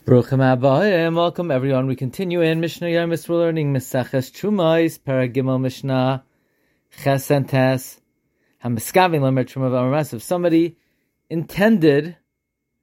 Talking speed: 110 wpm